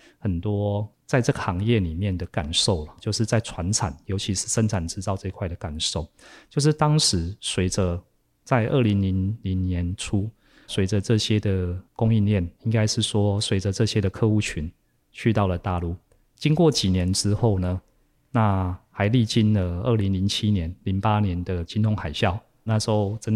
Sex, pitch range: male, 95-110 Hz